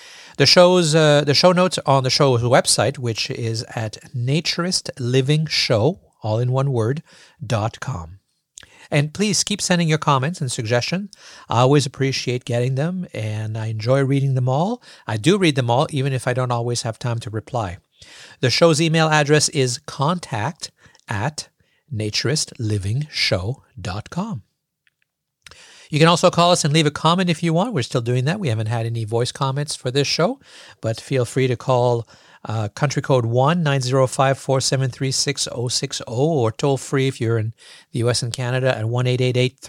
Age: 50-69